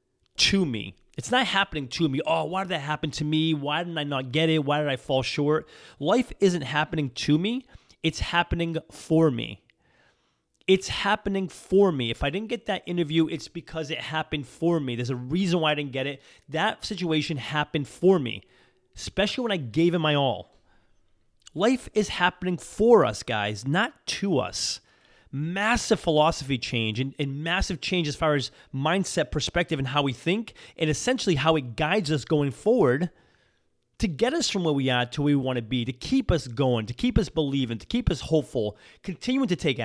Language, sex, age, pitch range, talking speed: English, male, 30-49, 135-180 Hz, 200 wpm